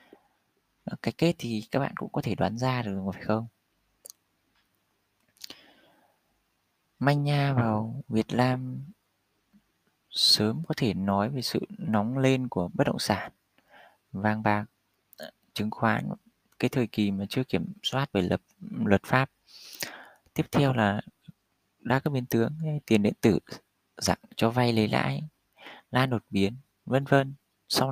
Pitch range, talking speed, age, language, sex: 105-130 Hz, 140 wpm, 20-39, Vietnamese, male